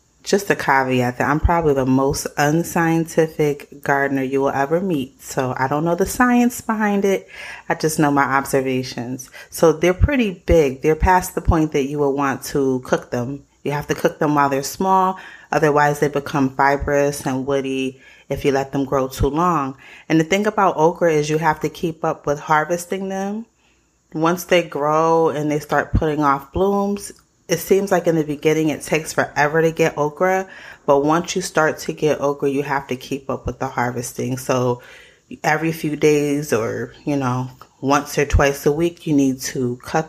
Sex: female